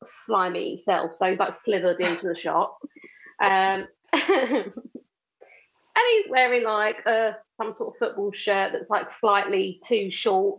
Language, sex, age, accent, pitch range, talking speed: English, female, 30-49, British, 195-285 Hz, 140 wpm